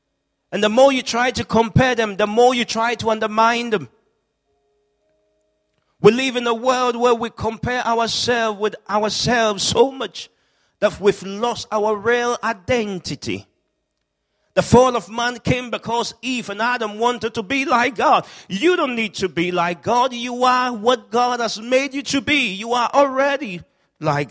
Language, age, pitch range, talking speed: English, 40-59, 150-240 Hz, 170 wpm